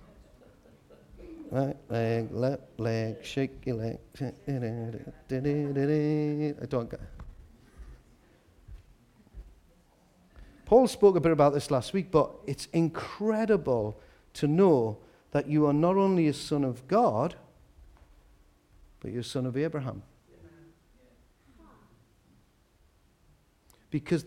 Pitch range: 95-150 Hz